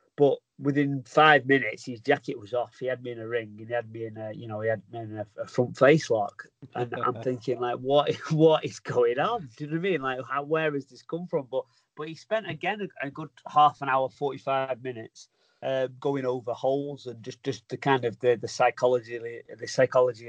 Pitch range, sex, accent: 115-140 Hz, male, British